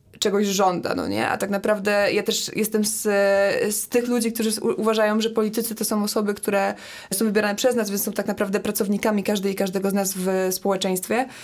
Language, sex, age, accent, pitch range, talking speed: Polish, female, 20-39, native, 210-235 Hz, 200 wpm